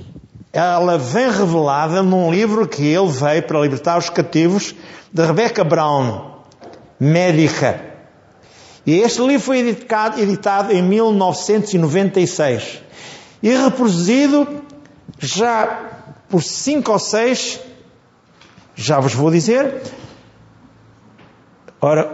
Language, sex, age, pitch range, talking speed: Portuguese, male, 50-69, 160-220 Hz, 100 wpm